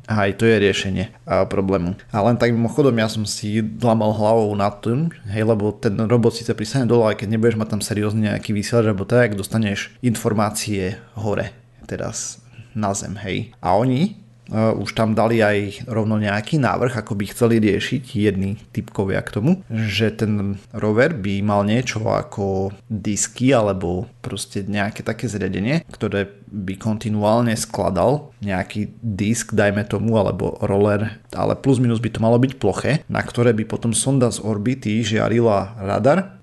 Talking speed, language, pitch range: 165 wpm, Slovak, 100-120 Hz